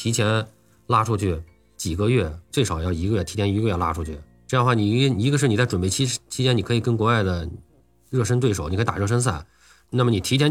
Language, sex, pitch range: Chinese, male, 90-115 Hz